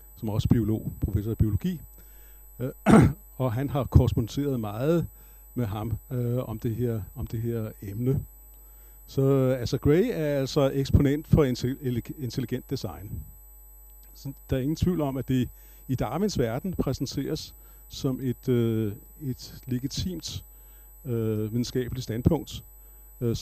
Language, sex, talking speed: Danish, male, 135 wpm